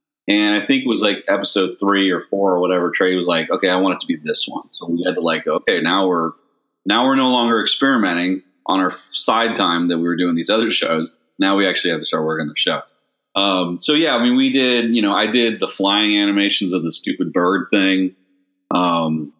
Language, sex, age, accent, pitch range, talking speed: English, male, 30-49, American, 85-120 Hz, 240 wpm